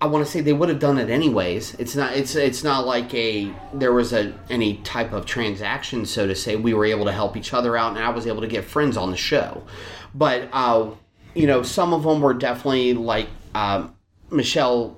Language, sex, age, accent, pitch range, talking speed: English, male, 30-49, American, 110-140 Hz, 230 wpm